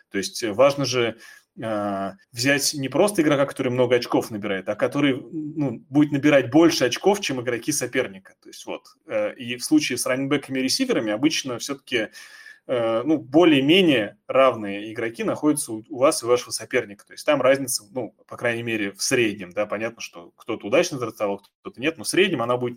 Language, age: Russian, 20-39